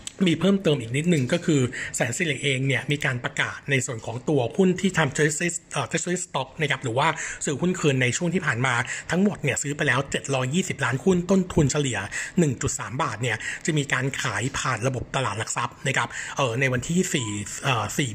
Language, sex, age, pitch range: Thai, male, 60-79, 130-165 Hz